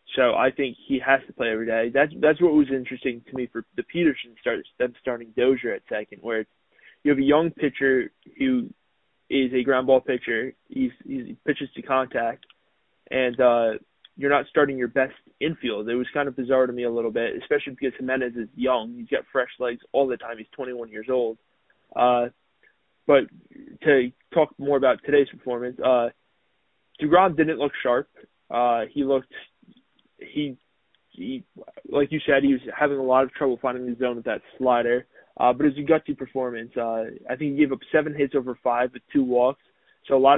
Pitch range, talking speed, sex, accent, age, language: 125-145 Hz, 195 wpm, male, American, 20-39, English